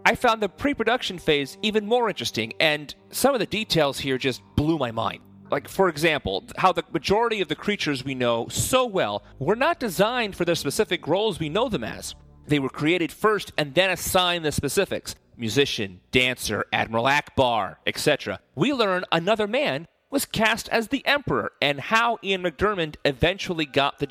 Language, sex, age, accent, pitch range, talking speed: English, male, 40-59, American, 125-190 Hz, 180 wpm